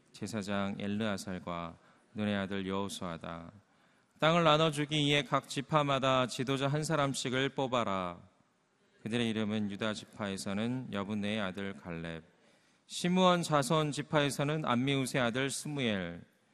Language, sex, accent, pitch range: Korean, male, native, 105-145 Hz